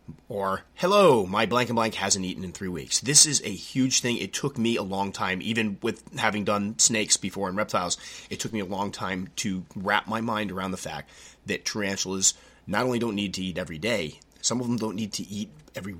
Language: English